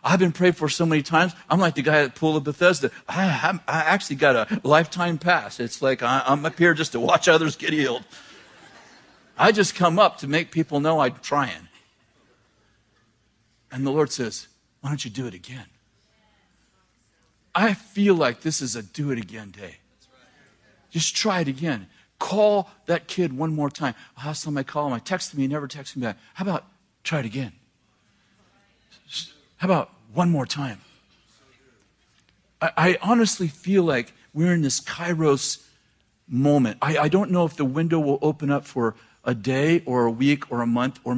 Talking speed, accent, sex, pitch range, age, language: 185 wpm, American, male, 120-165 Hz, 50-69, English